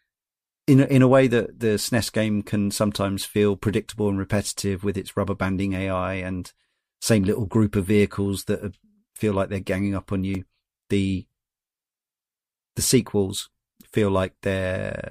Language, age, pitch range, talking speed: English, 40-59, 100-115 Hz, 160 wpm